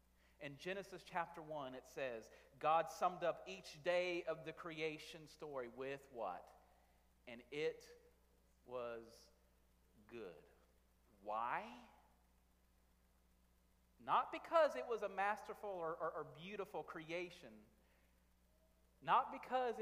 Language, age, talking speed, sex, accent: English, 40-59, 105 wpm, male, American